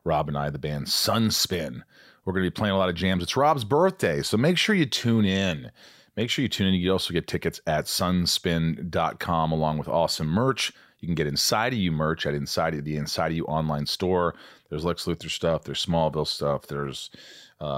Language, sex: English, male